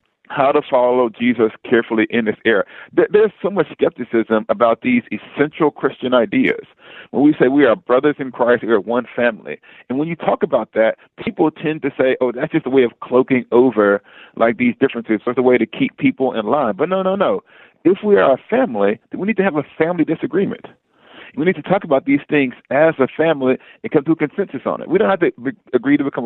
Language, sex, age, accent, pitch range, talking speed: English, male, 40-59, American, 125-175 Hz, 230 wpm